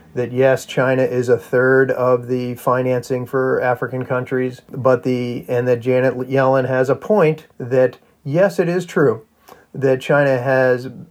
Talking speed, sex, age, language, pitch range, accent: 155 wpm, male, 40-59, English, 120-135 Hz, American